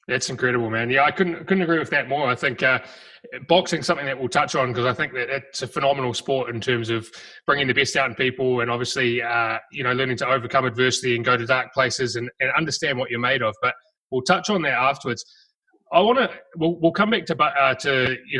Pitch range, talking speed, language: 125-160 Hz, 245 wpm, English